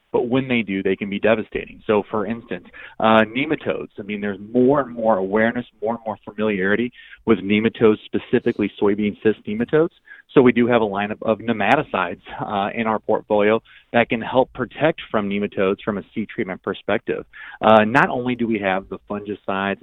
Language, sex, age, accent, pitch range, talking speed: English, male, 30-49, American, 105-120 Hz, 185 wpm